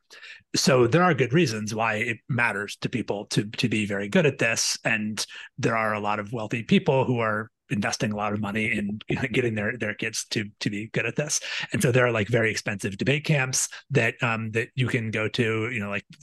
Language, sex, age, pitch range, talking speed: English, male, 30-49, 110-135 Hz, 235 wpm